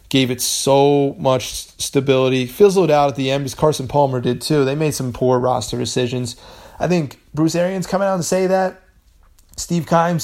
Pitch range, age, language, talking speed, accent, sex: 120-145 Hz, 30-49, English, 190 wpm, American, male